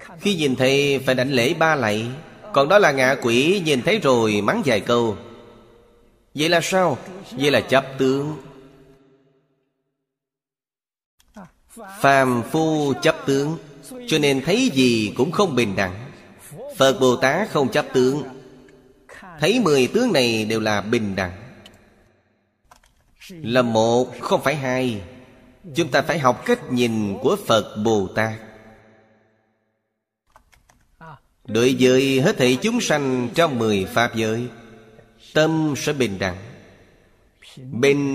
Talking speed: 130 wpm